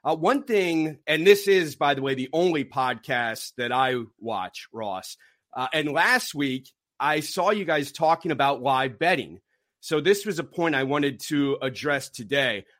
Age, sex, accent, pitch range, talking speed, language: 30-49, male, American, 135-165 Hz, 180 wpm, English